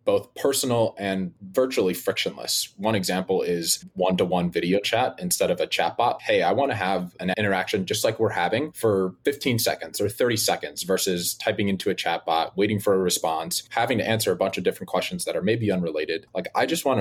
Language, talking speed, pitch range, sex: English, 200 wpm, 90-135 Hz, male